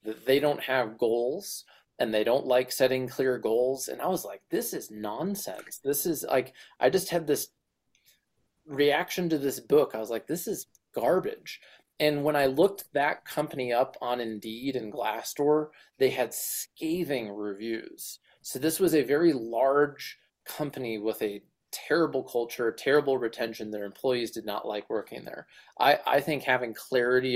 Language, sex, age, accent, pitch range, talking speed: English, male, 20-39, American, 115-145 Hz, 165 wpm